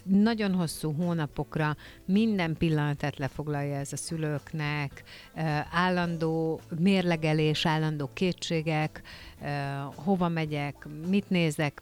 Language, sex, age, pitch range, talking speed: Hungarian, female, 50-69, 150-180 Hz, 85 wpm